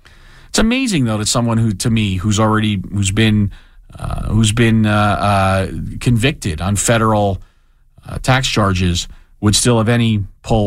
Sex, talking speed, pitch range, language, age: male, 155 wpm, 105-130 Hz, English, 40-59